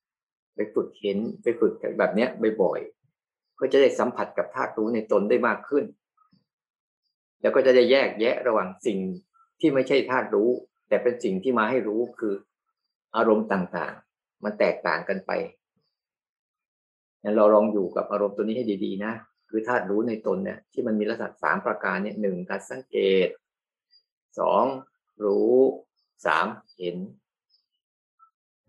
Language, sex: Thai, male